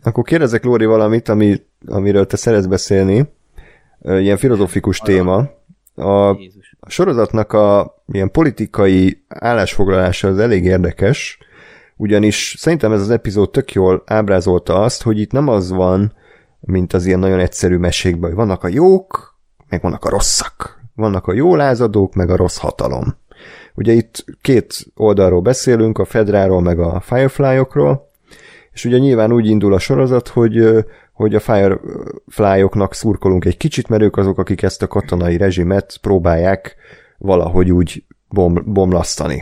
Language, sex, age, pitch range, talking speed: Hungarian, male, 30-49, 90-110 Hz, 140 wpm